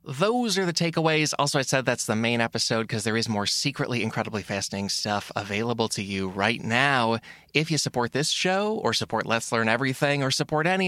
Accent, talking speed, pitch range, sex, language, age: American, 205 wpm, 110-150 Hz, male, English, 20-39